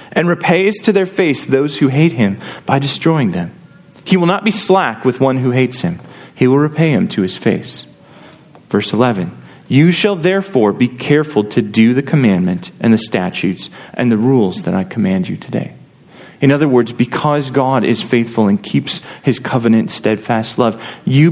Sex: male